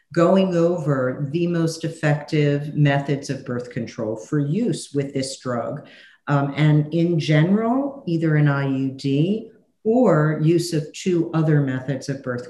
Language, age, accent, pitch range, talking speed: English, 50-69, American, 140-185 Hz, 140 wpm